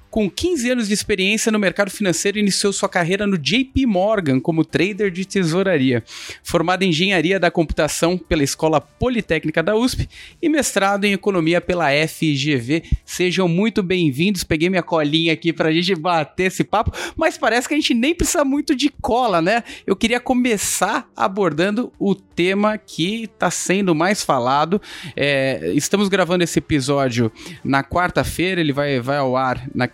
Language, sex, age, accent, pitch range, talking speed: Portuguese, male, 30-49, Brazilian, 140-195 Hz, 165 wpm